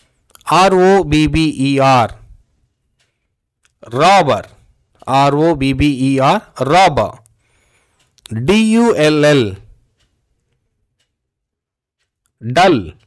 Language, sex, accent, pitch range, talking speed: Telugu, male, native, 115-180 Hz, 85 wpm